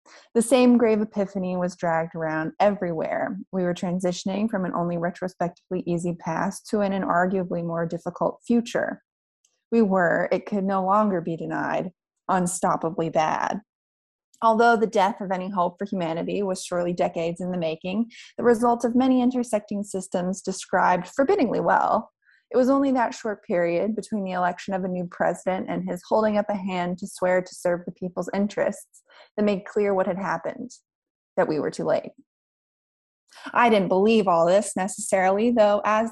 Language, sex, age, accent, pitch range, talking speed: English, female, 20-39, American, 180-215 Hz, 170 wpm